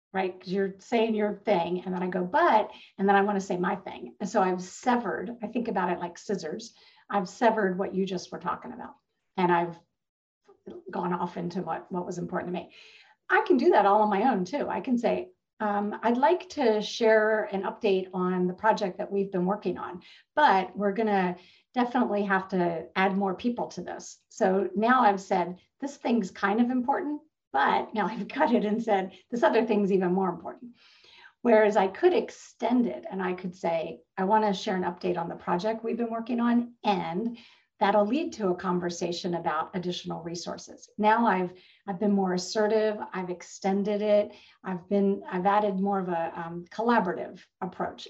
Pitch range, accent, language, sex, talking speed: 185-225 Hz, American, English, female, 200 wpm